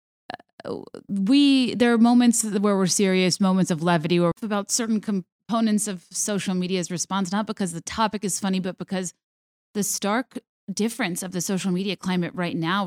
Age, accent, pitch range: 30-49, American, 170-200 Hz